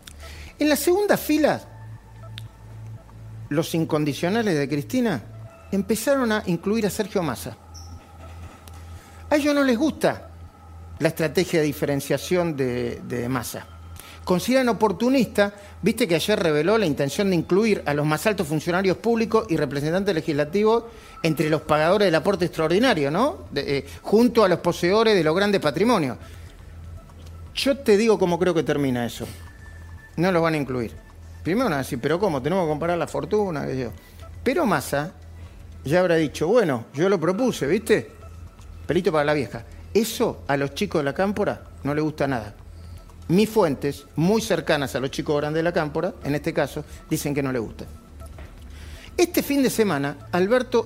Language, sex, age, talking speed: Spanish, male, 40-59, 160 wpm